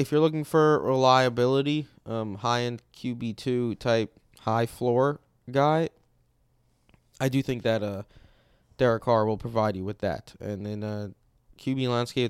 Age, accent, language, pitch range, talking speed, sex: 20-39, American, English, 110-130 Hz, 150 wpm, male